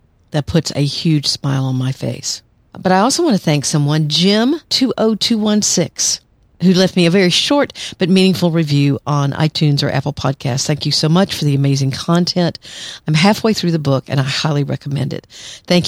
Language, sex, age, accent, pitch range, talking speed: English, female, 50-69, American, 145-175 Hz, 185 wpm